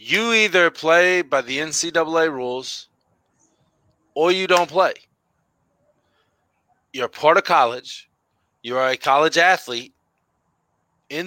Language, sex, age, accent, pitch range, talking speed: English, male, 30-49, American, 150-205 Hz, 110 wpm